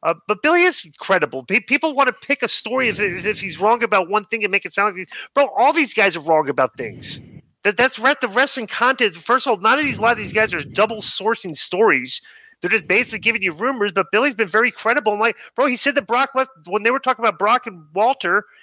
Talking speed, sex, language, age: 260 wpm, male, English, 30-49